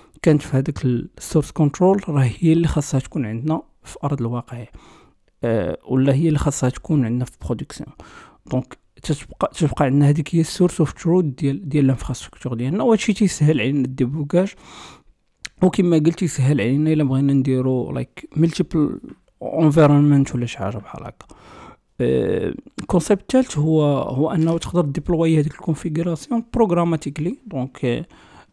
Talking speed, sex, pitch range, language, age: 135 wpm, male, 130-160 Hz, Arabic, 40-59